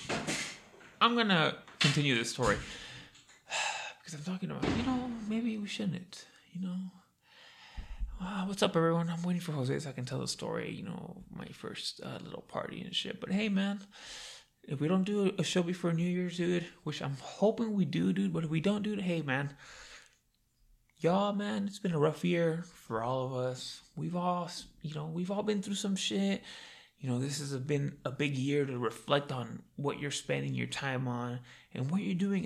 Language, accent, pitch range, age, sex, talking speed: English, American, 145-195 Hz, 20-39, male, 200 wpm